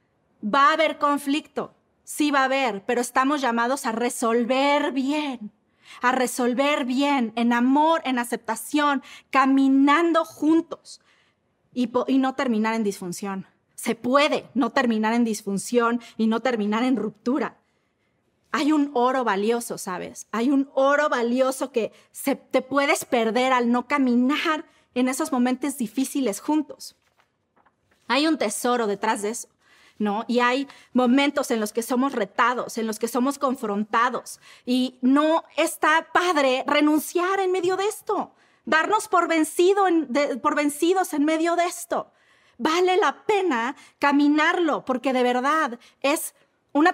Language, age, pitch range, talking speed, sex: Spanish, 30-49, 245-310 Hz, 140 wpm, female